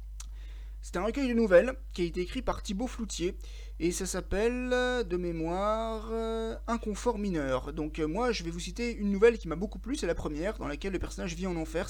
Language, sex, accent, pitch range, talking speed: French, male, French, 155-225 Hz, 205 wpm